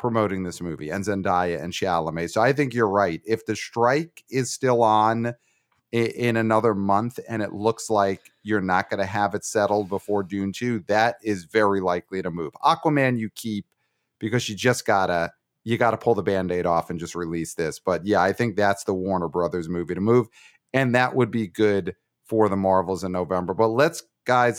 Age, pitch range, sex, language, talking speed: 30-49, 95-115 Hz, male, English, 200 wpm